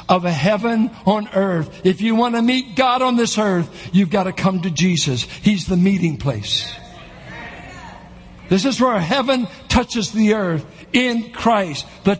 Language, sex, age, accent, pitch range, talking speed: English, male, 60-79, American, 160-220 Hz, 165 wpm